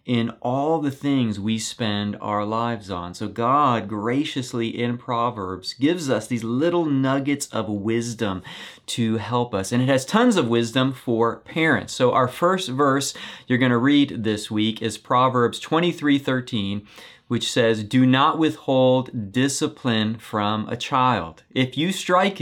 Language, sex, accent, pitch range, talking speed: English, male, American, 110-135 Hz, 155 wpm